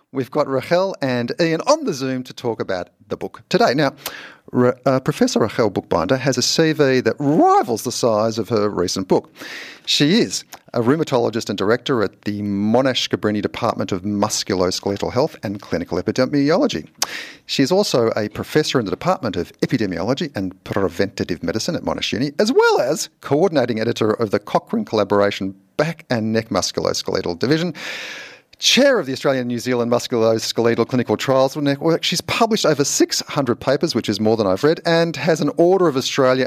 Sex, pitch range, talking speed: male, 105-160 Hz, 170 wpm